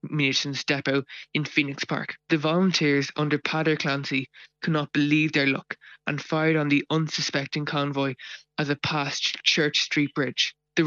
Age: 20-39